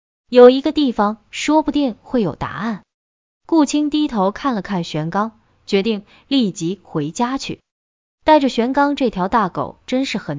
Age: 20-39